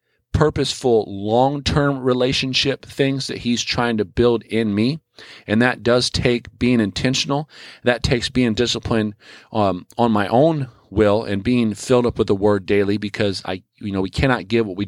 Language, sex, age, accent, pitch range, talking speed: English, male, 40-59, American, 100-120 Hz, 175 wpm